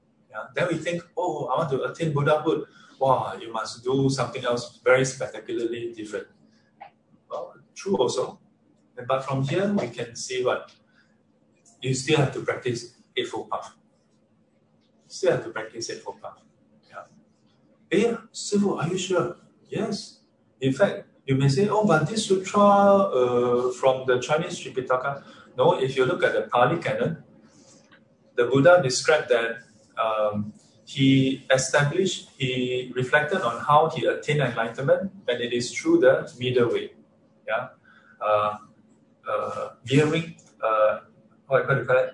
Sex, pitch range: male, 125-200 Hz